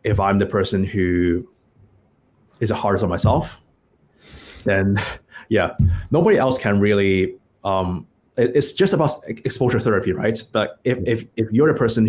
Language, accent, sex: English, Chinese, male